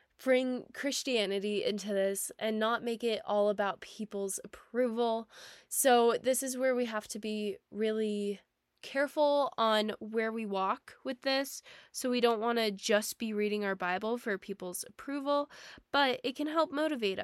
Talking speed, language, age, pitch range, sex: 160 wpm, English, 10-29, 210-250 Hz, female